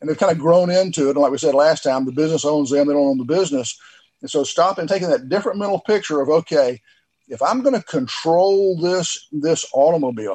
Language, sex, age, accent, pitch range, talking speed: English, male, 50-69, American, 140-180 Hz, 240 wpm